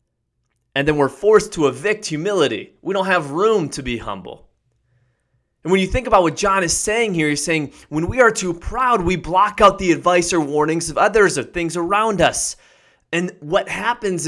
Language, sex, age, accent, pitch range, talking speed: English, male, 30-49, American, 135-190 Hz, 200 wpm